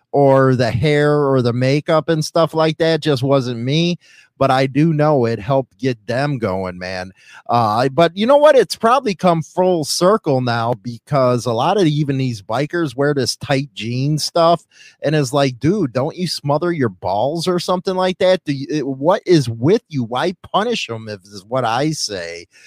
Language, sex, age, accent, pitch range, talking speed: English, male, 30-49, American, 125-170 Hz, 200 wpm